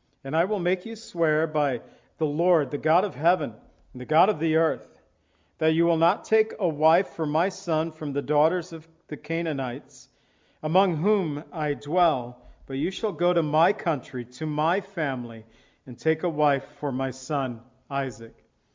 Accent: American